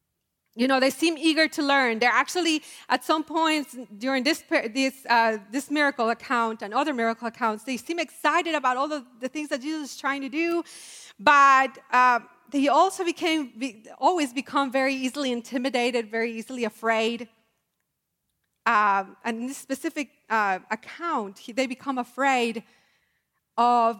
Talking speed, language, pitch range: 155 wpm, English, 230-285 Hz